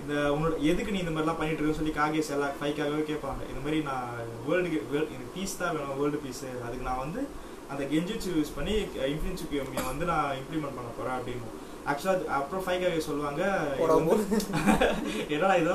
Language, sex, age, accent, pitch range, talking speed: Tamil, male, 20-39, native, 140-180 Hz, 155 wpm